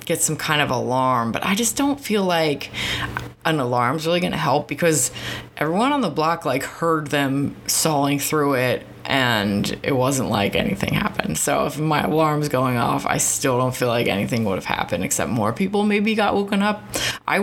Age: 20-39